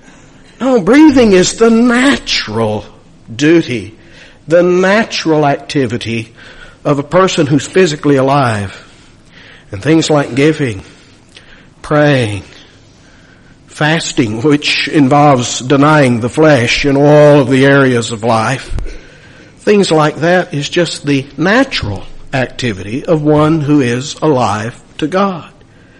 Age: 60-79